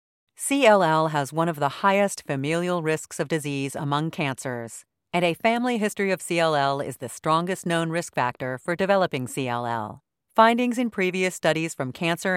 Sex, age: female, 40-59